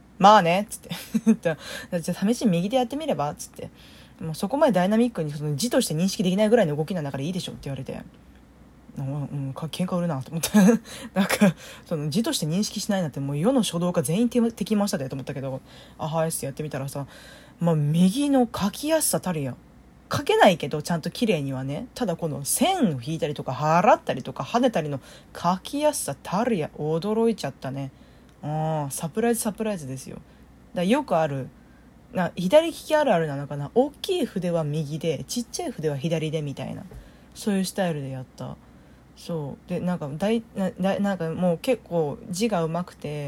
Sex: female